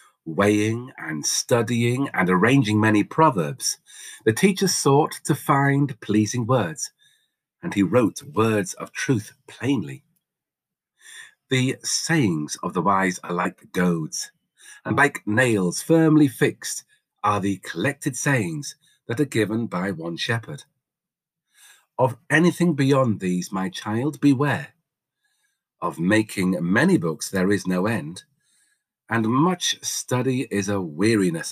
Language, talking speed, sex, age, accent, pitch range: English, 125 wpm, male, 50-69, British, 105-155 Hz